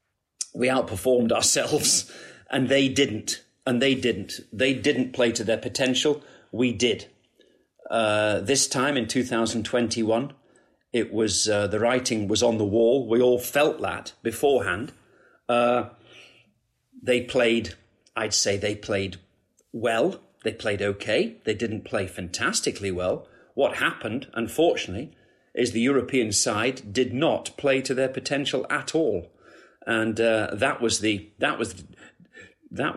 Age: 40-59